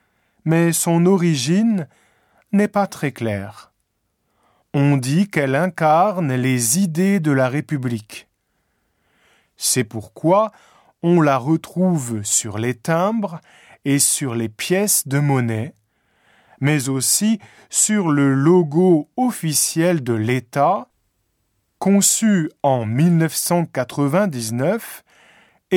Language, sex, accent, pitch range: Japanese, male, French, 125-190 Hz